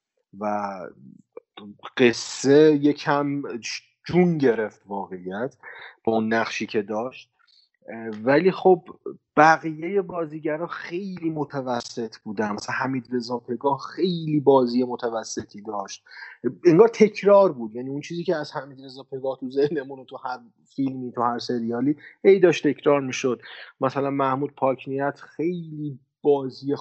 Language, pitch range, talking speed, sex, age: Persian, 120-155 Hz, 120 wpm, male, 30-49